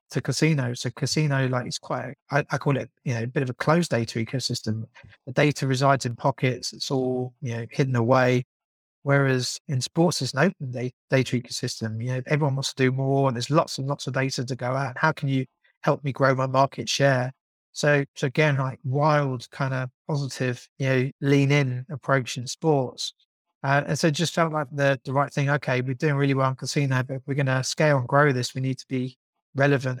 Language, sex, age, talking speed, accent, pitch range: English, male, 30-49, 230 wpm, British, 130-145 Hz